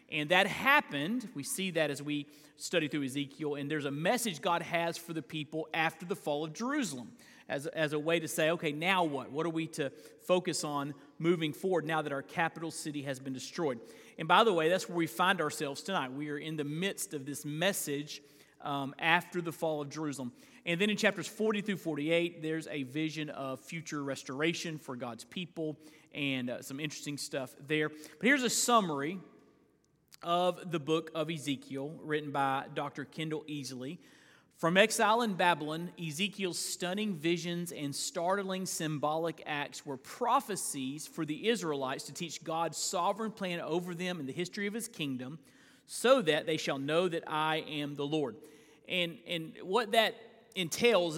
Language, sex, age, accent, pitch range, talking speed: English, male, 40-59, American, 150-180 Hz, 180 wpm